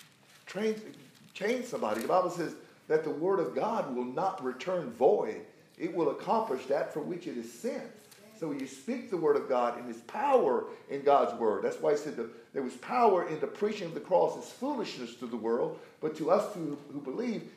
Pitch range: 165-225 Hz